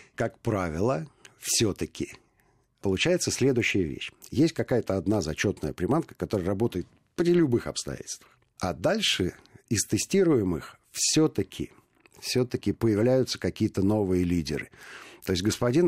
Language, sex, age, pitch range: Russian, male, 50-69, 90-120 Hz